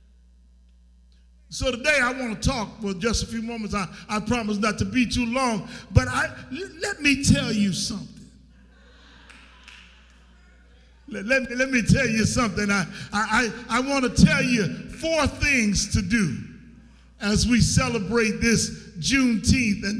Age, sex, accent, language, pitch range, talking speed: 50-69, male, American, English, 195-245 Hz, 155 wpm